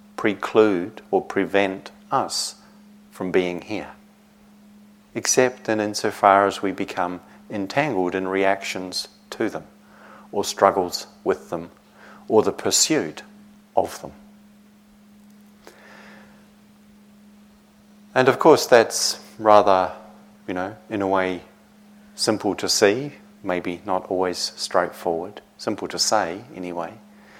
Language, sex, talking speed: English, male, 105 wpm